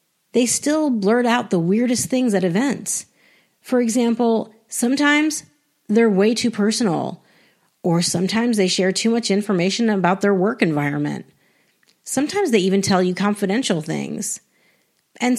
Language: English